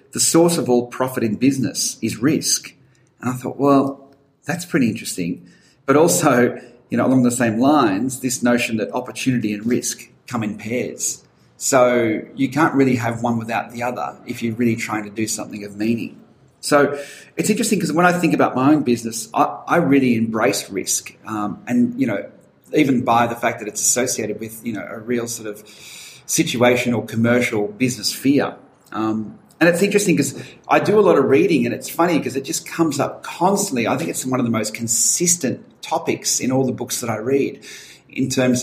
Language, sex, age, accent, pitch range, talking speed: English, male, 40-59, Australian, 115-135 Hz, 195 wpm